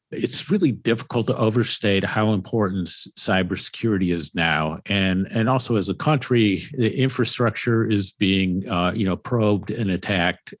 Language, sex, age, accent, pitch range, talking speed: English, male, 50-69, American, 95-120 Hz, 155 wpm